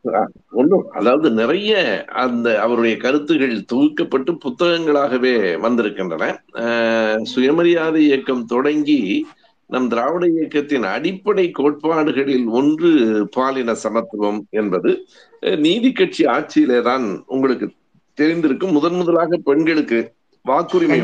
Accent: native